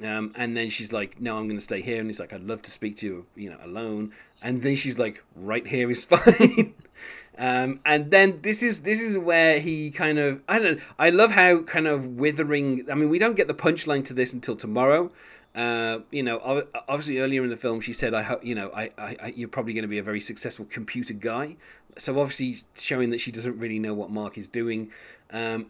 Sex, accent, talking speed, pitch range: male, British, 235 wpm, 110-140 Hz